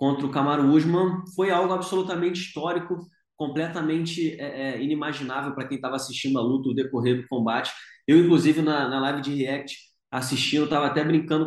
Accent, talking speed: Brazilian, 165 wpm